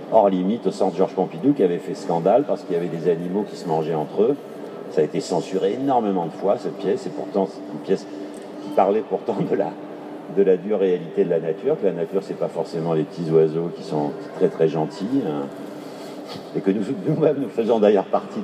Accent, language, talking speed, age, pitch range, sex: French, French, 230 wpm, 50-69, 80-100 Hz, male